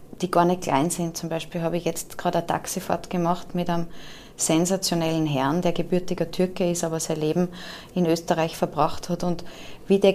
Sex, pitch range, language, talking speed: female, 175-195 Hz, German, 190 wpm